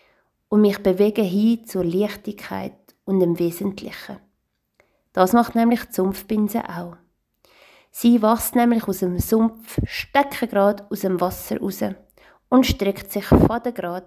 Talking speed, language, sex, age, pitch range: 130 wpm, German, female, 30-49, 185-230 Hz